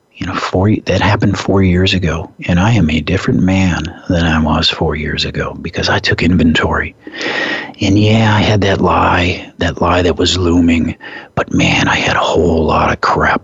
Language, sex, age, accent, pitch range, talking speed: English, male, 40-59, American, 85-105 Hz, 195 wpm